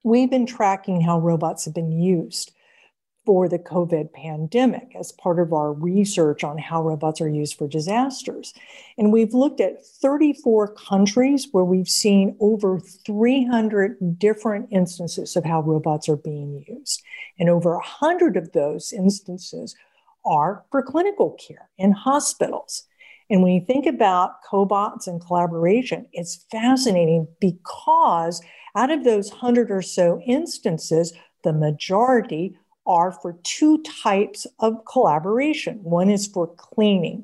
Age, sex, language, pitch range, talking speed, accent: 50-69, female, English, 170-245 Hz, 140 wpm, American